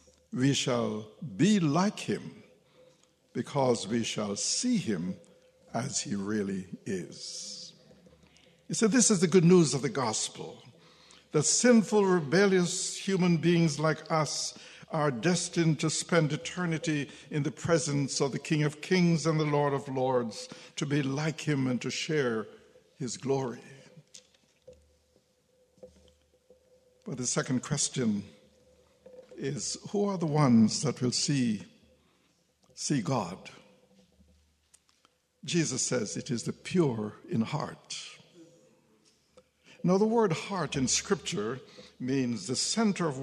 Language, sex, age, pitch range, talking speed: English, male, 60-79, 130-180 Hz, 125 wpm